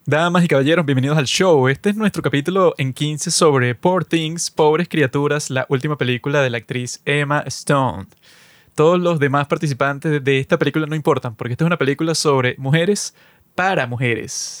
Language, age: Spanish, 20-39